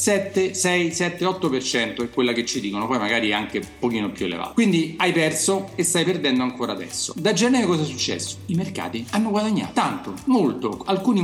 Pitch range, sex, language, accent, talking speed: 130-190 Hz, male, Italian, native, 190 wpm